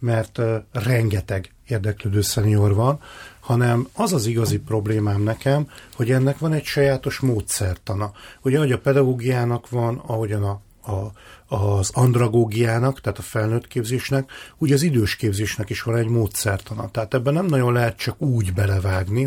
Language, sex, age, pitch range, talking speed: Hungarian, male, 40-59, 105-135 Hz, 145 wpm